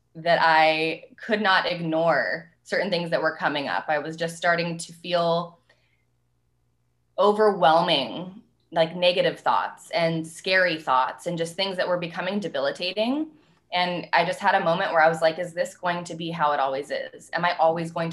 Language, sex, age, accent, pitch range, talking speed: English, female, 20-39, American, 155-175 Hz, 180 wpm